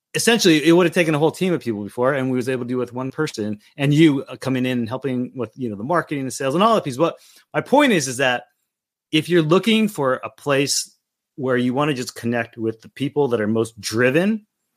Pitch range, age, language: 115-140 Hz, 30-49, English